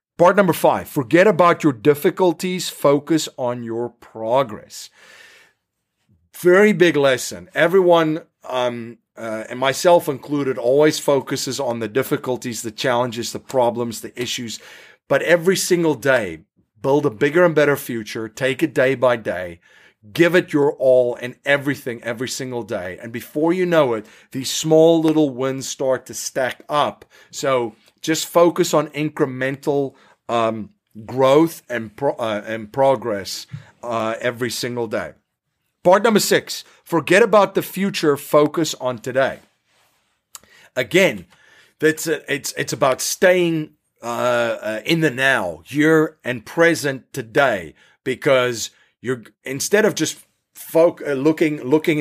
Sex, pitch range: male, 120-160 Hz